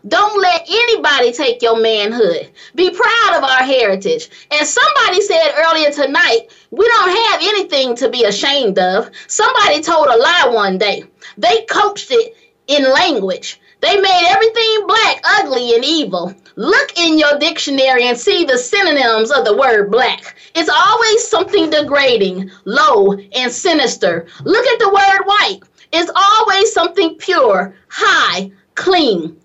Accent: American